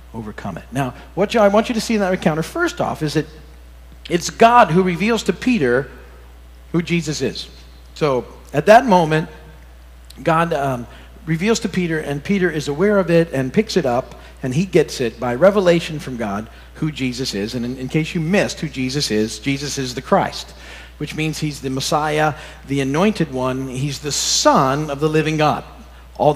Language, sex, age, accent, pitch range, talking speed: English, male, 50-69, American, 130-180 Hz, 190 wpm